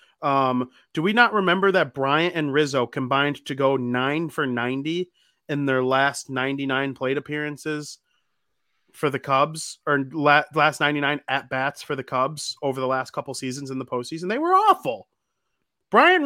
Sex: male